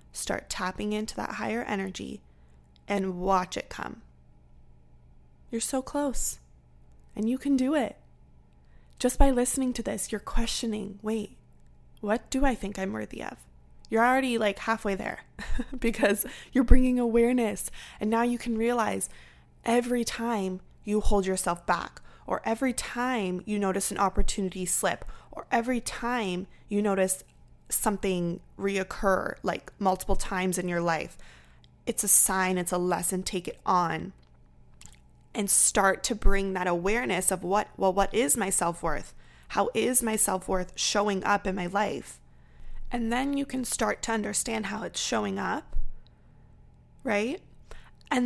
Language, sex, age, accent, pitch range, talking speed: English, female, 20-39, American, 170-230 Hz, 145 wpm